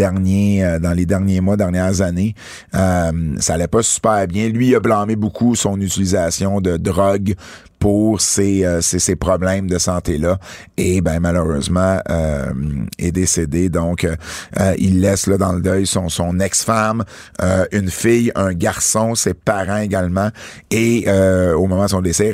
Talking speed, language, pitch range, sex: 170 wpm, French, 90-120 Hz, male